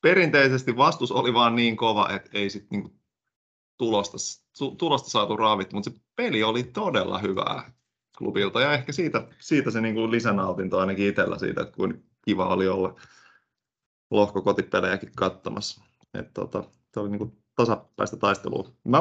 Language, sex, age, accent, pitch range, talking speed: Finnish, male, 30-49, native, 100-120 Hz, 145 wpm